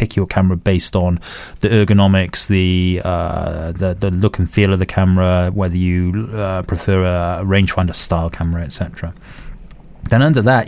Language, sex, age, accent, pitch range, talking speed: English, male, 30-49, British, 95-110 Hz, 155 wpm